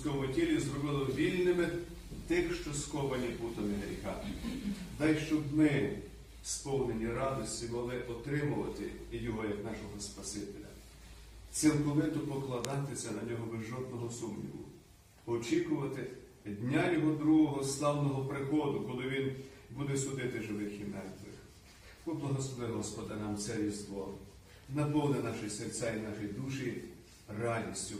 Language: Ukrainian